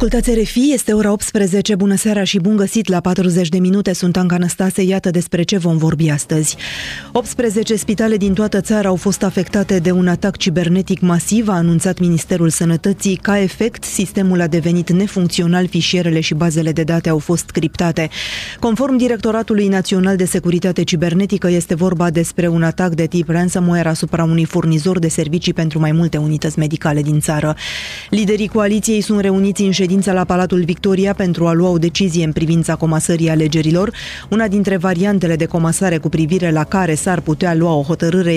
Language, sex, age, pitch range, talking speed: Romanian, female, 20-39, 165-195 Hz, 170 wpm